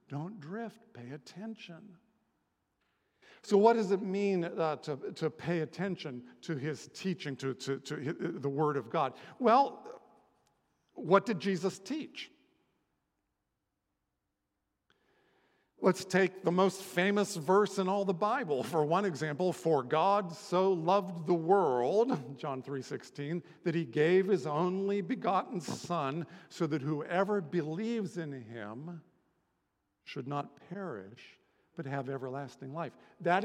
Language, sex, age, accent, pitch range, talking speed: English, male, 50-69, American, 155-195 Hz, 130 wpm